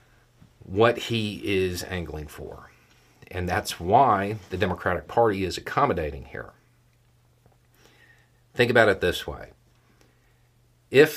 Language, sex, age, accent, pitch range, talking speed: English, male, 40-59, American, 90-120 Hz, 105 wpm